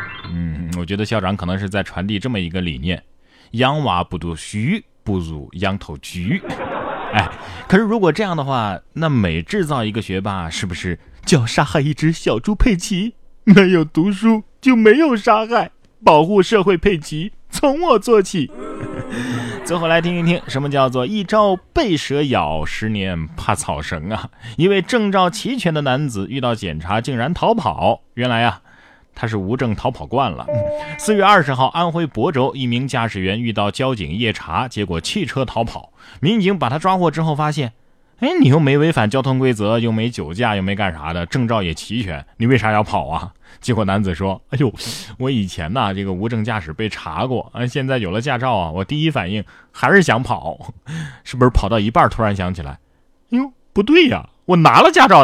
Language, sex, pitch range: Chinese, male, 100-165 Hz